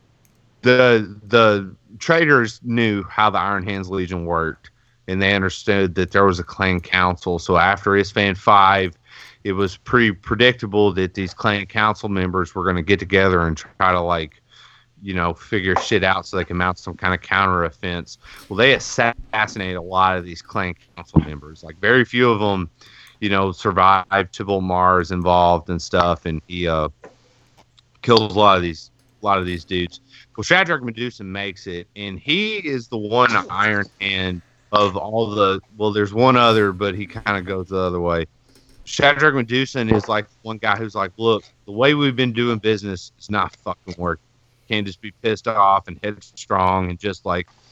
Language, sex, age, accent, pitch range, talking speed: English, male, 30-49, American, 90-115 Hz, 185 wpm